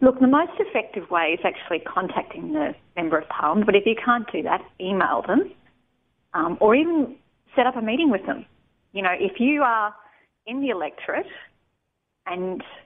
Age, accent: 30-49, Australian